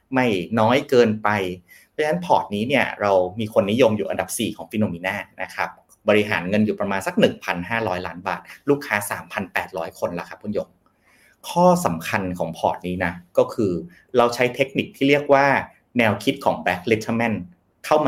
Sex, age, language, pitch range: male, 30-49, Thai, 95-125 Hz